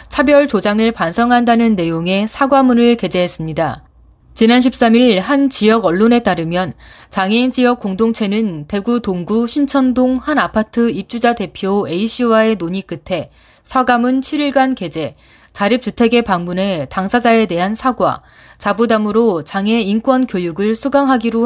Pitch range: 185-245 Hz